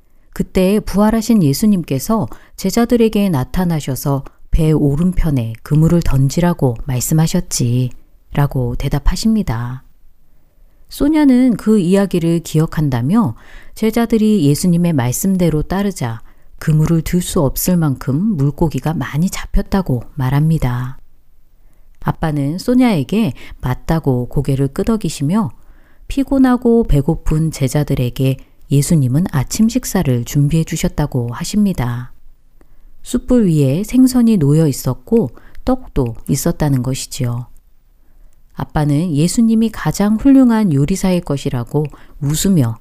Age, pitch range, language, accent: 40-59, 135-200 Hz, Korean, native